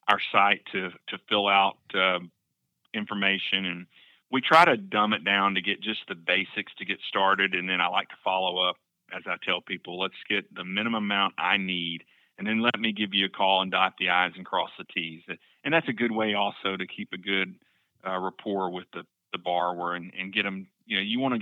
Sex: male